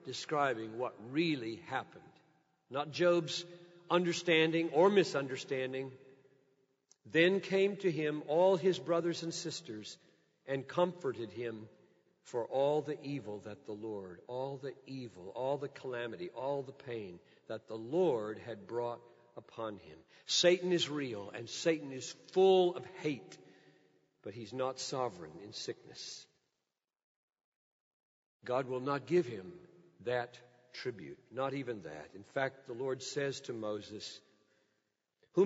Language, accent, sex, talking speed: English, American, male, 130 wpm